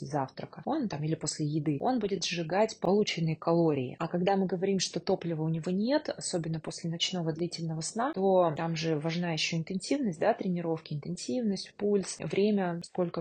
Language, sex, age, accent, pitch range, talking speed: Russian, female, 20-39, native, 160-195 Hz, 170 wpm